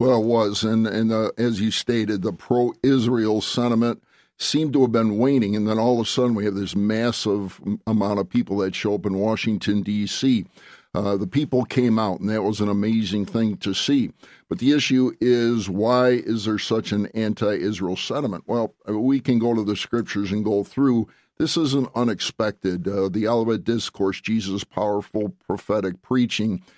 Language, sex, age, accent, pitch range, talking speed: English, male, 50-69, American, 105-120 Hz, 180 wpm